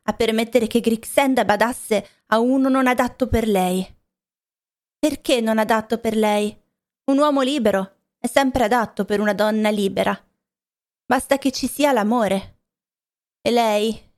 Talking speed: 140 wpm